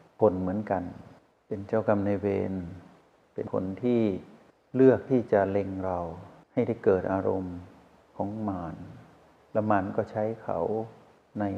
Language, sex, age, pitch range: Thai, male, 60-79, 95-115 Hz